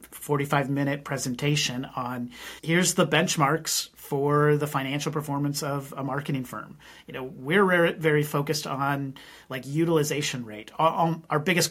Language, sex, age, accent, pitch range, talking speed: English, male, 30-49, American, 135-160 Hz, 145 wpm